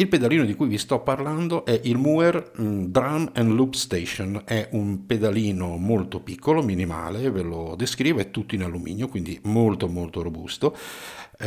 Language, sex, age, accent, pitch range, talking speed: Italian, male, 50-69, native, 90-115 Hz, 160 wpm